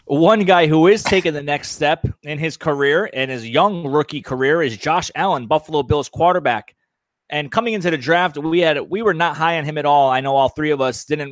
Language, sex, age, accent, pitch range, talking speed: English, male, 30-49, American, 145-180 Hz, 235 wpm